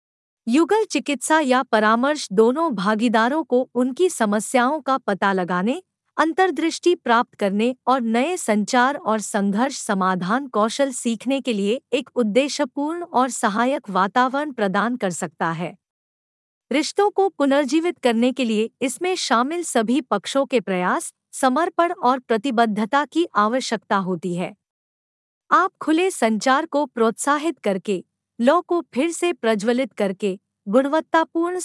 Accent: native